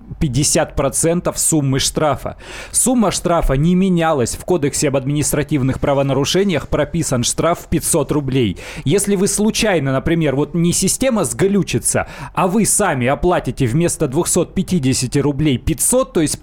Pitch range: 135-180 Hz